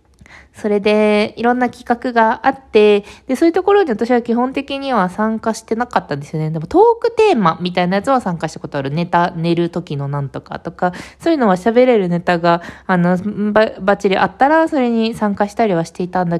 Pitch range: 175-255 Hz